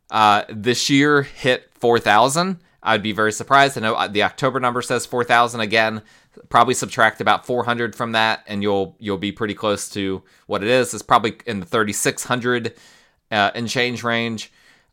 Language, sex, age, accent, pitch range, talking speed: English, male, 20-39, American, 105-125 Hz, 175 wpm